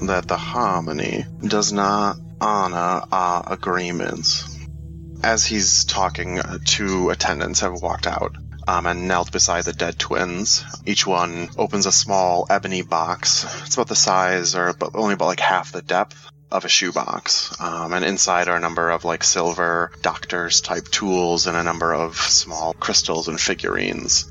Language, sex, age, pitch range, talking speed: English, male, 20-39, 80-95 Hz, 160 wpm